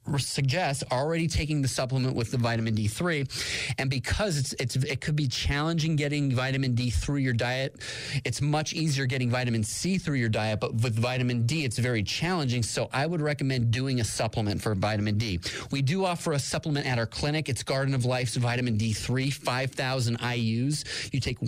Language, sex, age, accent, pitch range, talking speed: English, male, 30-49, American, 115-145 Hz, 185 wpm